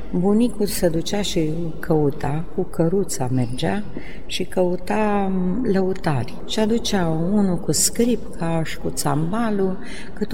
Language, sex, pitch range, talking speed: Romanian, female, 145-180 Hz, 120 wpm